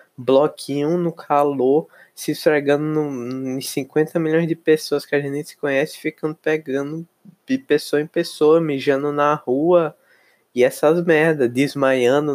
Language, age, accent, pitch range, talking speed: Portuguese, 20-39, Brazilian, 125-165 Hz, 135 wpm